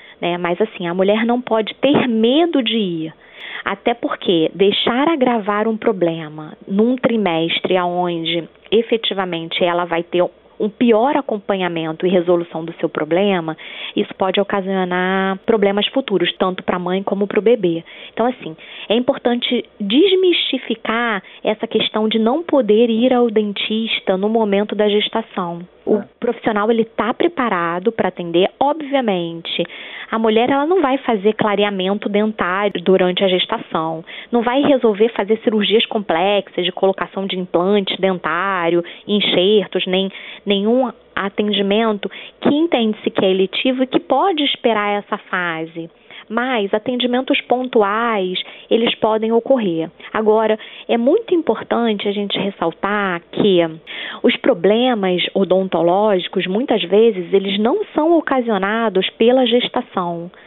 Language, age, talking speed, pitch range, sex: Portuguese, 20-39, 130 wpm, 185-235 Hz, female